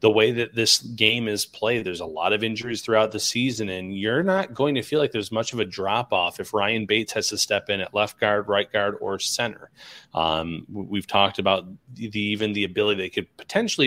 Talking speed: 230 wpm